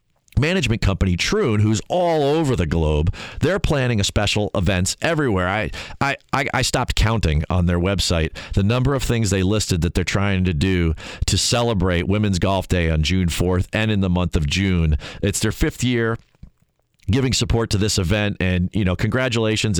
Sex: male